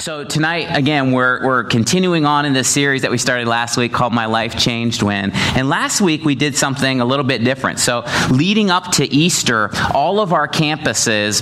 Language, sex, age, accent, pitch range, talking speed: English, male, 30-49, American, 115-145 Hz, 205 wpm